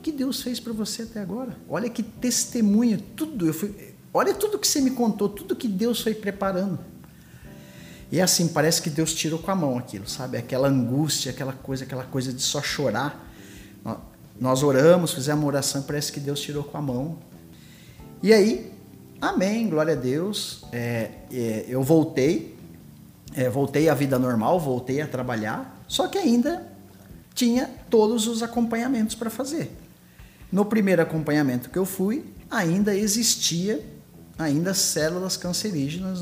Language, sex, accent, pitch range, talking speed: Portuguese, male, Brazilian, 130-205 Hz, 145 wpm